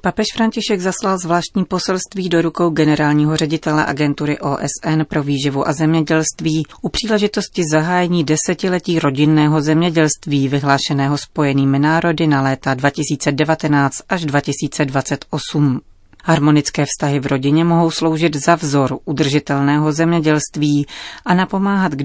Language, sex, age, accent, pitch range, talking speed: Czech, female, 30-49, native, 145-170 Hz, 115 wpm